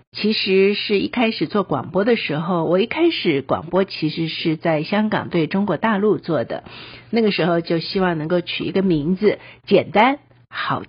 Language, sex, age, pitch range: Chinese, female, 50-69, 170-225 Hz